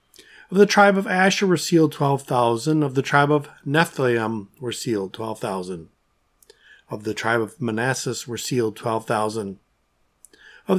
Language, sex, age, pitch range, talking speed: English, male, 40-59, 120-160 Hz, 155 wpm